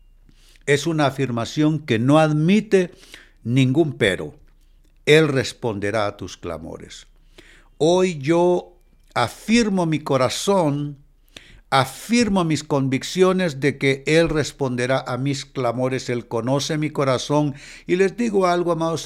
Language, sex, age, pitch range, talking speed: Spanish, male, 60-79, 115-155 Hz, 115 wpm